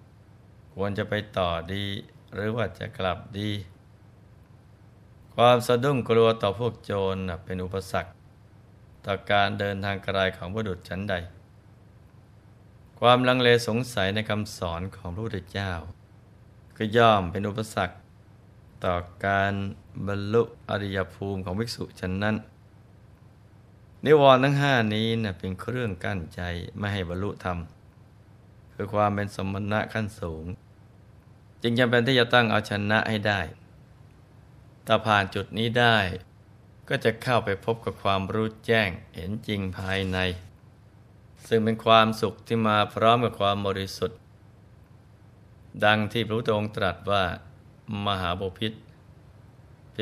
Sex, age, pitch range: male, 20-39, 100-115 Hz